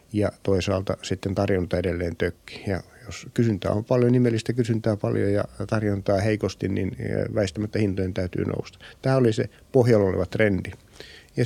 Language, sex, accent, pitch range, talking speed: Finnish, male, native, 95-110 Hz, 155 wpm